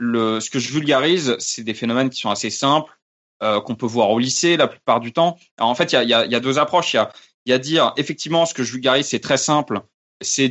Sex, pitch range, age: male, 110-145 Hz, 20-39